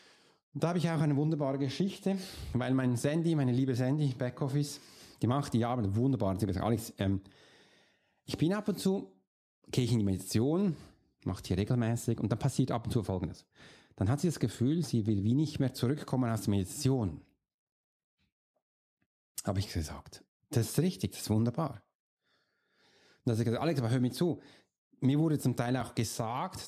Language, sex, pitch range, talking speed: German, male, 115-145 Hz, 185 wpm